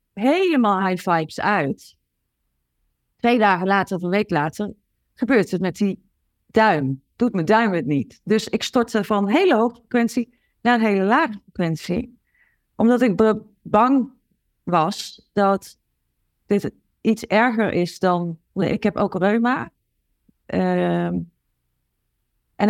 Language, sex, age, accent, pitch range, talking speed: Dutch, female, 30-49, Dutch, 185-220 Hz, 135 wpm